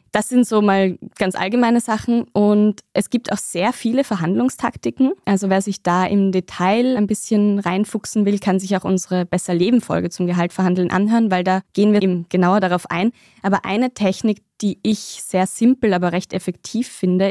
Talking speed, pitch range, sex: 175 wpm, 180-215 Hz, female